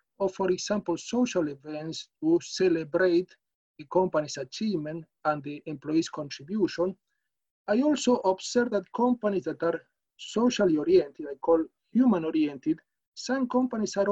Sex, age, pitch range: male, 50-69, 165-235 Hz